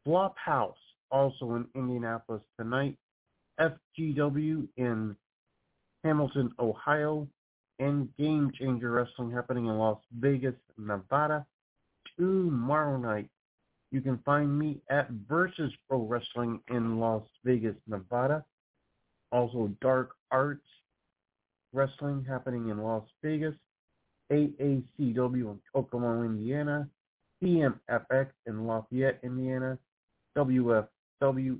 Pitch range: 115-140 Hz